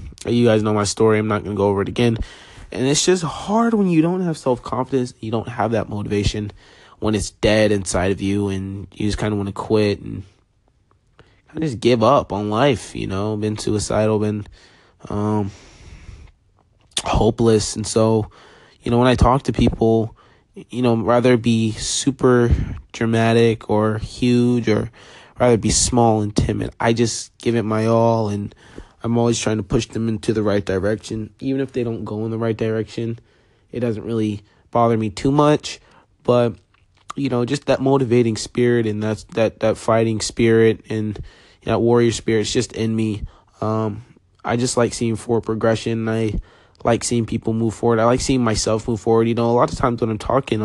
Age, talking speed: 20-39, 190 wpm